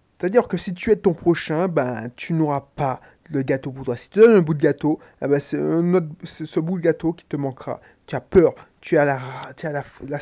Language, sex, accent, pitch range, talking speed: French, male, French, 140-185 Hz, 255 wpm